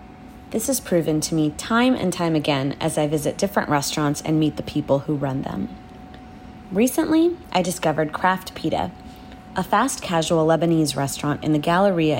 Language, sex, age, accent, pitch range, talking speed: English, female, 30-49, American, 150-195 Hz, 165 wpm